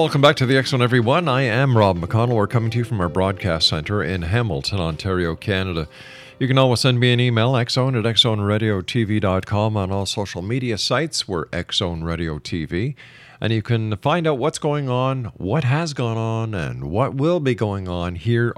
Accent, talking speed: American, 190 wpm